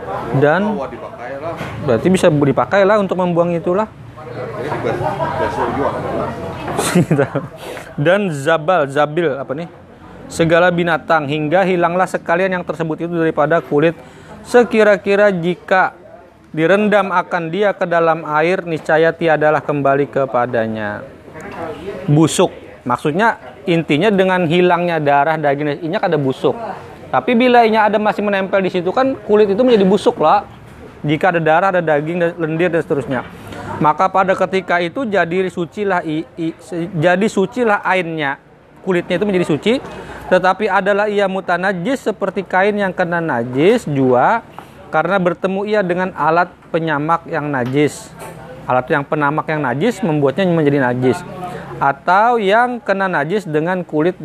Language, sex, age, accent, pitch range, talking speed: Indonesian, male, 30-49, native, 150-190 Hz, 125 wpm